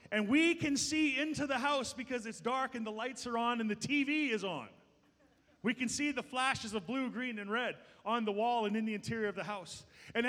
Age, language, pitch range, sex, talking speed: 30-49, English, 235-290 Hz, male, 240 wpm